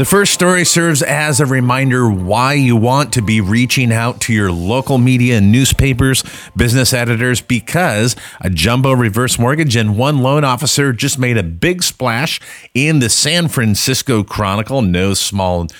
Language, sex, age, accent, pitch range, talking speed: English, male, 30-49, American, 95-125 Hz, 165 wpm